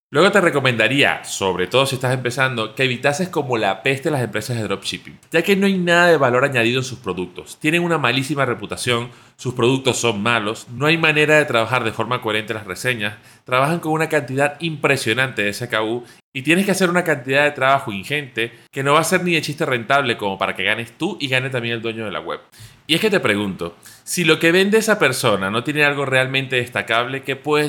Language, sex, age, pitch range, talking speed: Spanish, male, 30-49, 110-150 Hz, 220 wpm